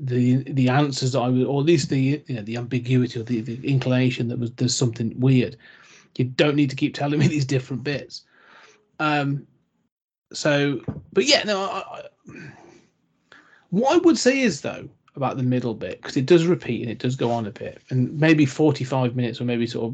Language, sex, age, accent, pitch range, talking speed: English, male, 30-49, British, 125-155 Hz, 210 wpm